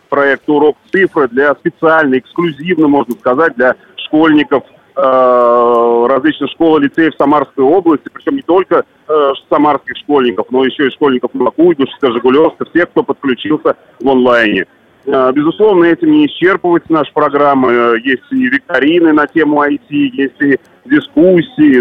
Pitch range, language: 130-160 Hz, Russian